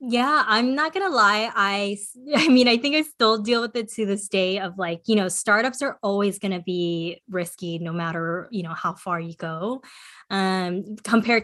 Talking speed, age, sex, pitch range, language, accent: 210 wpm, 20-39, female, 185-235 Hz, English, American